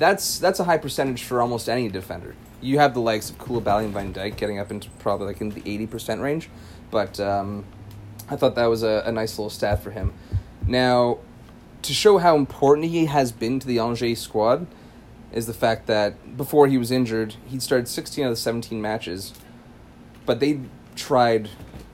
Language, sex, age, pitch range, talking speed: English, male, 30-49, 105-125 Hz, 195 wpm